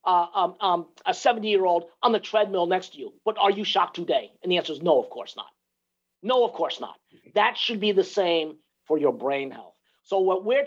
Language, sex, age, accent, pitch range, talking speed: English, male, 50-69, American, 175-275 Hz, 235 wpm